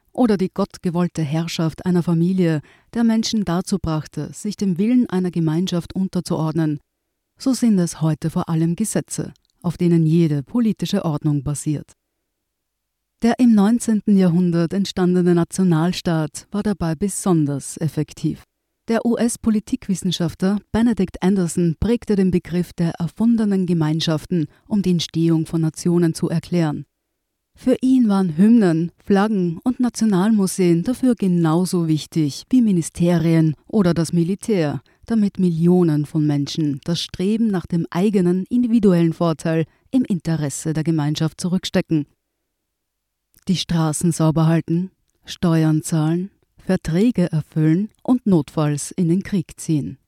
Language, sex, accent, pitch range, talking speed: German, female, German, 160-200 Hz, 120 wpm